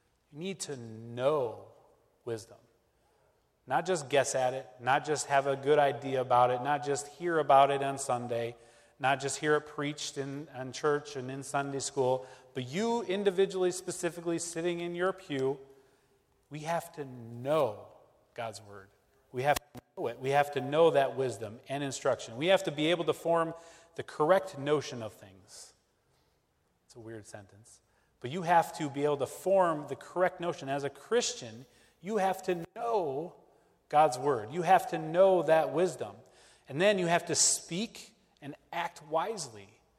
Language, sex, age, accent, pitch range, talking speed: English, male, 30-49, American, 130-170 Hz, 175 wpm